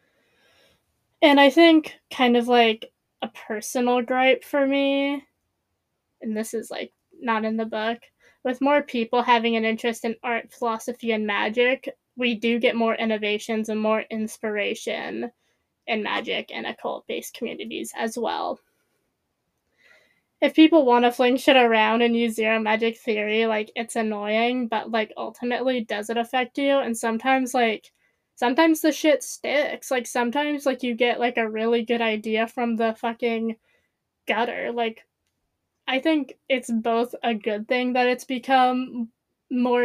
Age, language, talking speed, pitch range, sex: 20-39, English, 150 wpm, 225-255 Hz, female